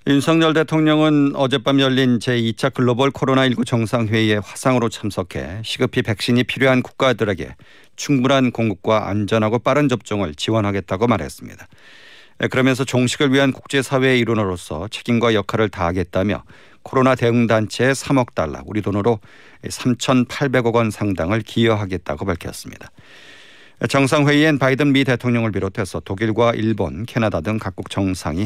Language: Korean